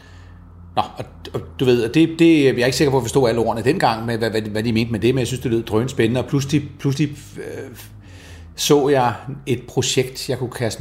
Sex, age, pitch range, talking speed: male, 30-49, 100-130 Hz, 220 wpm